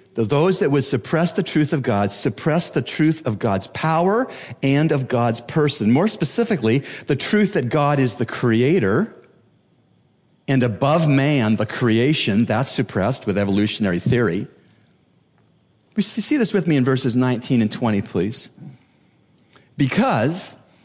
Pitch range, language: 125-175 Hz, English